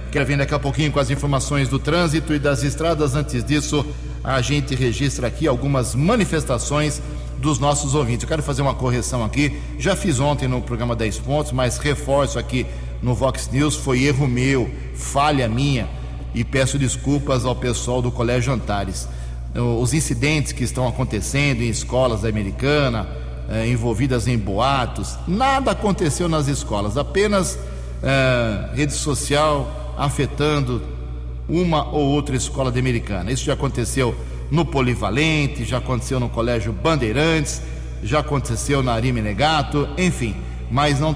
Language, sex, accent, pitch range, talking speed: English, male, Brazilian, 115-145 Hz, 145 wpm